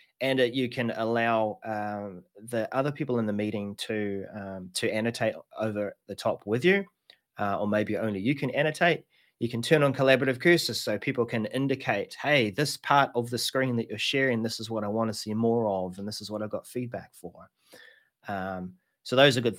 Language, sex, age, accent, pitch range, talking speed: English, male, 30-49, Australian, 105-140 Hz, 210 wpm